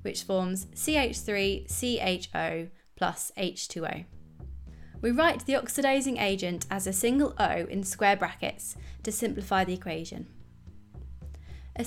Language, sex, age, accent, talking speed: English, female, 20-39, British, 110 wpm